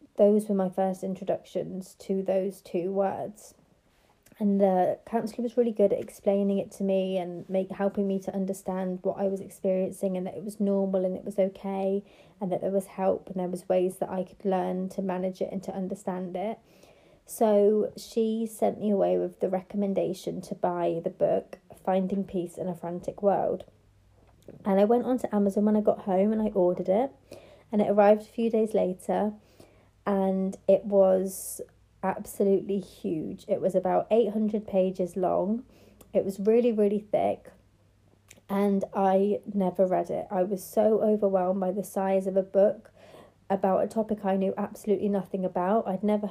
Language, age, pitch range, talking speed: English, 30-49, 185-205 Hz, 180 wpm